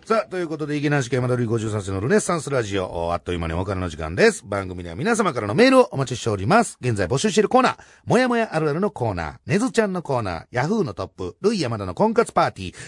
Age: 40-59